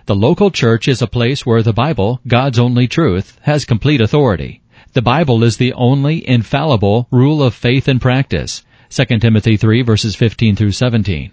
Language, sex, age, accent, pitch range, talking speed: English, male, 40-59, American, 110-135 Hz, 170 wpm